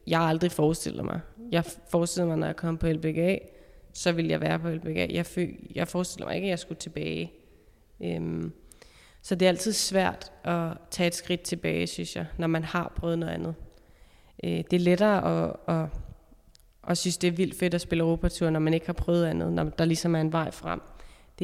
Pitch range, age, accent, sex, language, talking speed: 160-180 Hz, 20-39, native, female, Danish, 205 wpm